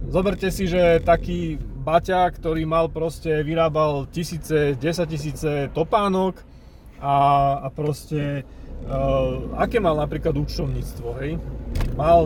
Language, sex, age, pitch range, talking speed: Slovak, male, 30-49, 135-170 Hz, 110 wpm